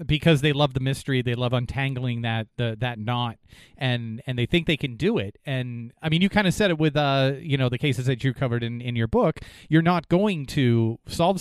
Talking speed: 240 wpm